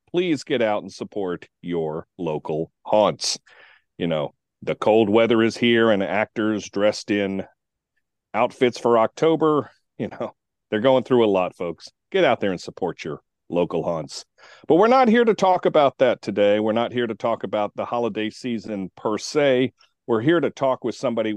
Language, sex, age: English, male, 40-59